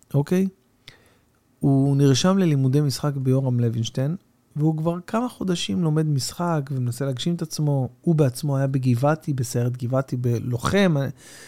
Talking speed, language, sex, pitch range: 130 wpm, Hebrew, male, 120-160 Hz